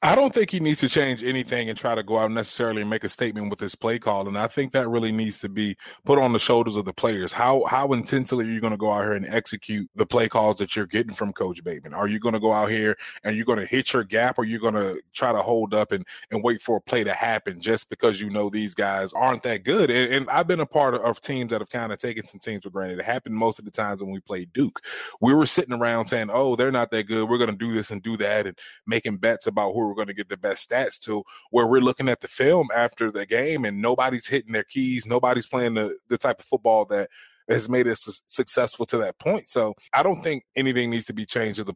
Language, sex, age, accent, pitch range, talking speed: English, male, 20-39, American, 105-125 Hz, 280 wpm